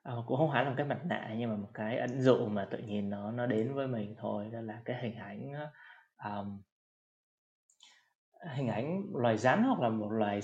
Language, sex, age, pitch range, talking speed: Vietnamese, male, 20-39, 110-135 Hz, 220 wpm